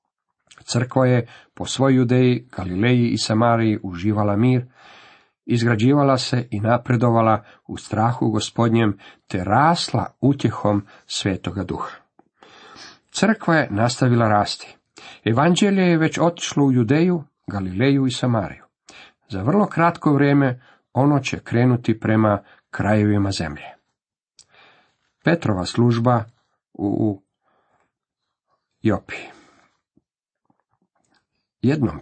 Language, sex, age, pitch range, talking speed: Croatian, male, 50-69, 110-140 Hz, 95 wpm